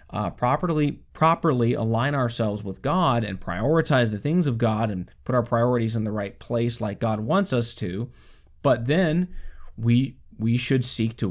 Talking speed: 175 wpm